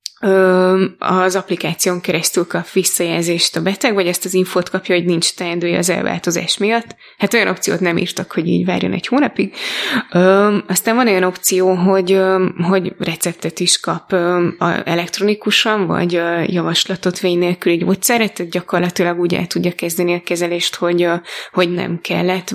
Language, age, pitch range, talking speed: Hungarian, 20-39, 175-195 Hz, 145 wpm